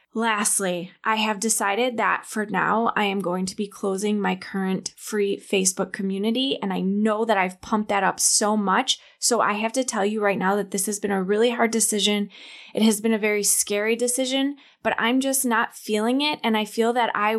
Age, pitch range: 20-39, 200-230 Hz